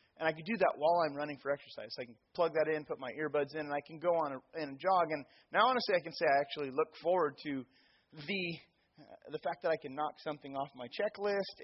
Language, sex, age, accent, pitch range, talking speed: English, male, 30-49, American, 140-185 Hz, 260 wpm